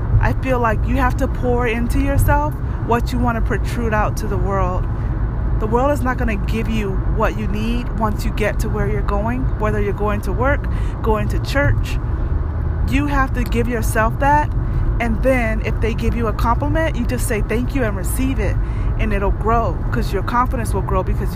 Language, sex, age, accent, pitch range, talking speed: English, female, 30-49, American, 105-115 Hz, 210 wpm